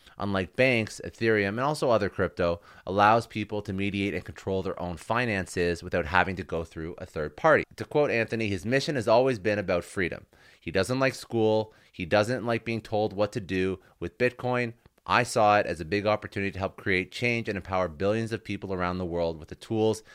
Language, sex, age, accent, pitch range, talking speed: English, male, 30-49, American, 90-115 Hz, 210 wpm